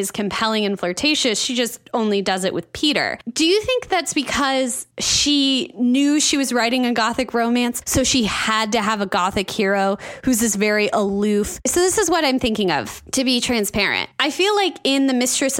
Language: English